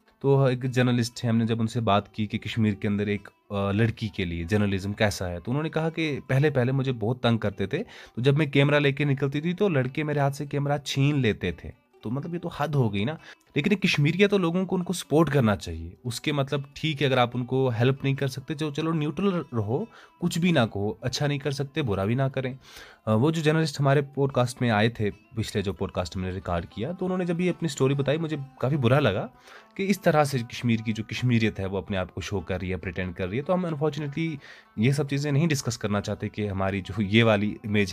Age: 30-49